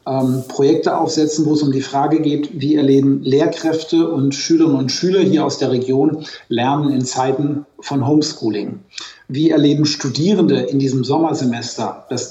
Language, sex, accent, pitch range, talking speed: German, male, German, 130-150 Hz, 150 wpm